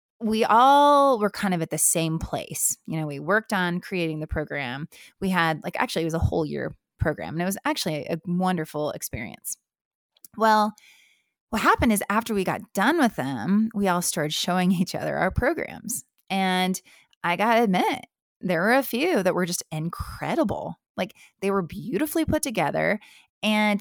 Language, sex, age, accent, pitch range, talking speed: English, female, 20-39, American, 160-215 Hz, 180 wpm